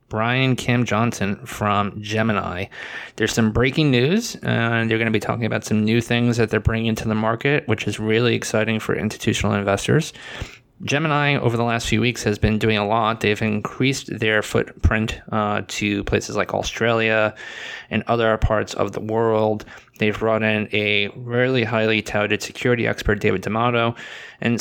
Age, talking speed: 20-39, 170 wpm